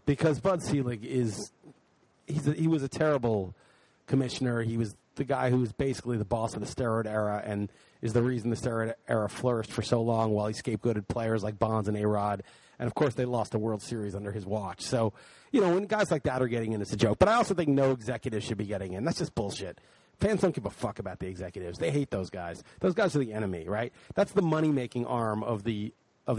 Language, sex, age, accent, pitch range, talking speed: English, male, 30-49, American, 110-140 Hz, 235 wpm